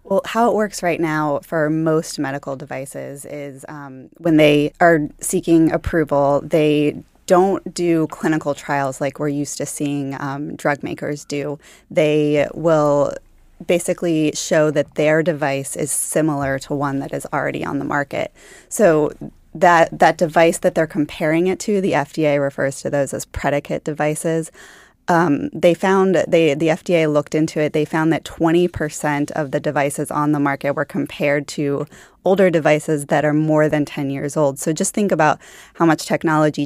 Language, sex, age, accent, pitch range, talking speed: English, female, 20-39, American, 145-165 Hz, 165 wpm